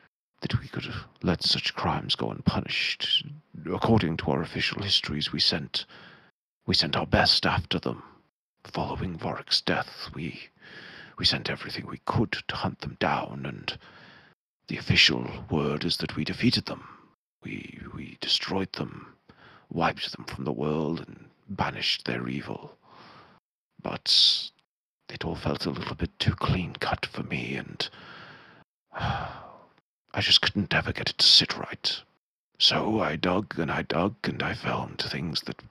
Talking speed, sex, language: 150 wpm, male, English